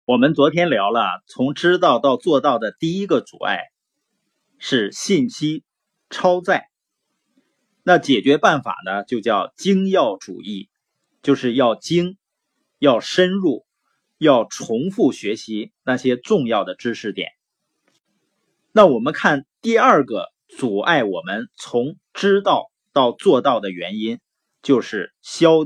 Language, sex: Chinese, male